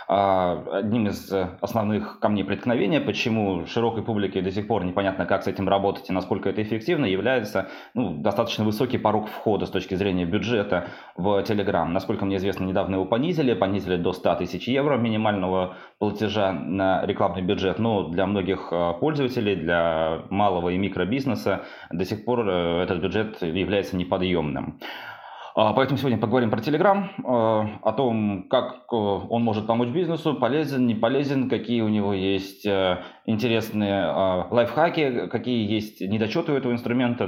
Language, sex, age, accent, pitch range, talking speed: Russian, male, 20-39, native, 95-115 Hz, 145 wpm